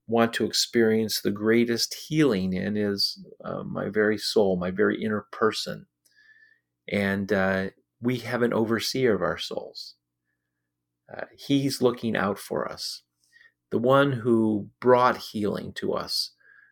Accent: American